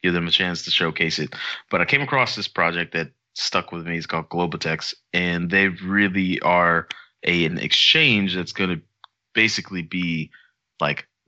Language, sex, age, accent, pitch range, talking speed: English, male, 20-39, American, 85-100 Hz, 170 wpm